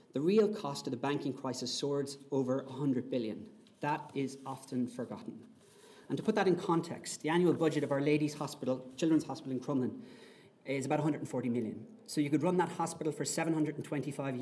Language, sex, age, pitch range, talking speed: English, male, 30-49, 130-150 Hz, 185 wpm